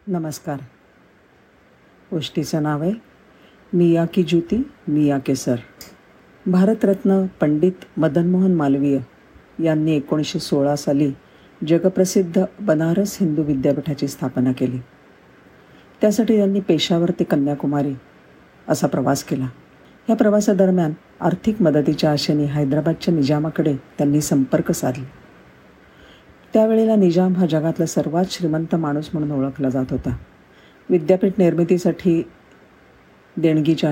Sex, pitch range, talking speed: female, 145-185 Hz, 95 wpm